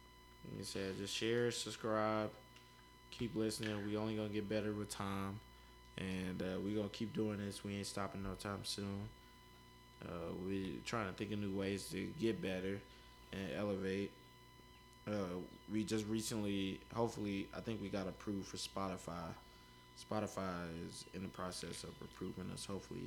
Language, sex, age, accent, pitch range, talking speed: English, male, 20-39, American, 90-105 Hz, 165 wpm